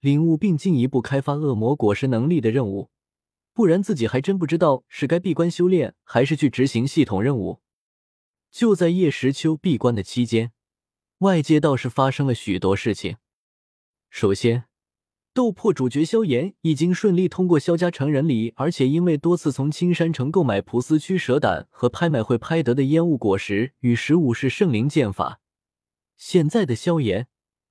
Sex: male